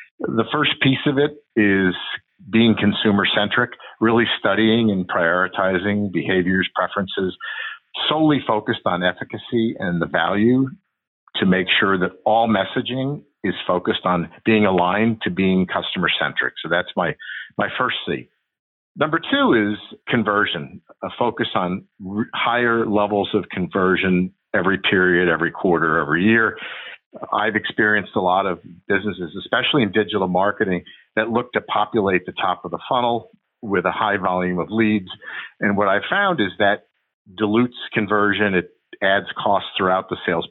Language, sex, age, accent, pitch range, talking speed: English, male, 50-69, American, 95-115 Hz, 145 wpm